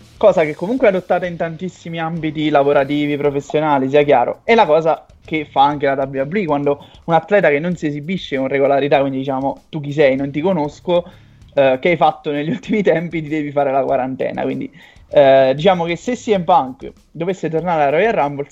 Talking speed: 200 wpm